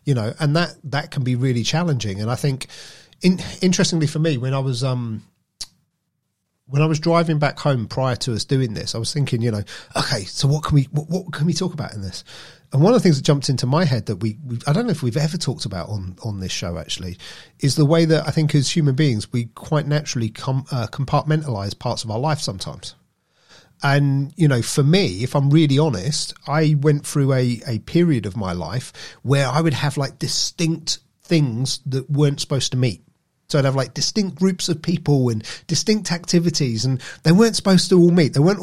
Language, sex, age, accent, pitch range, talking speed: English, male, 40-59, British, 130-160 Hz, 225 wpm